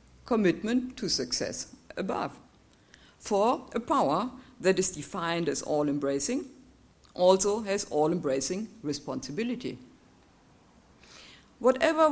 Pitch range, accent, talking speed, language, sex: 155-260 Hz, German, 85 wpm, English, female